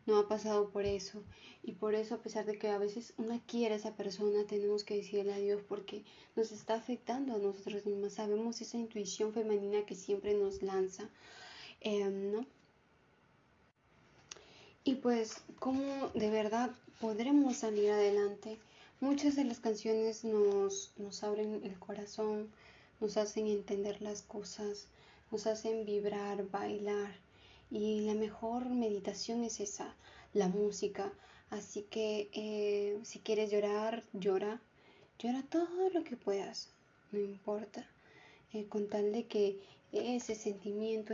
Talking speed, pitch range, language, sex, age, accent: 140 wpm, 205-220 Hz, Spanish, female, 20-39, Mexican